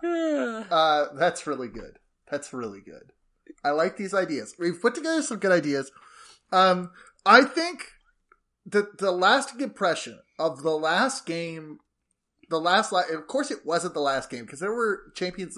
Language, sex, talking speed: English, male, 160 wpm